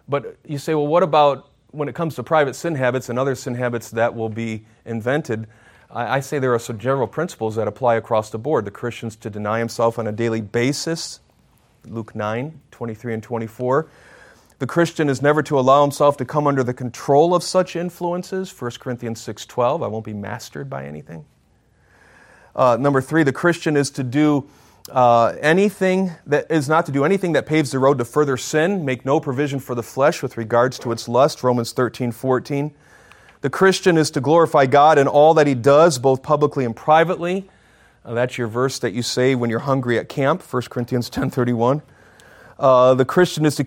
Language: English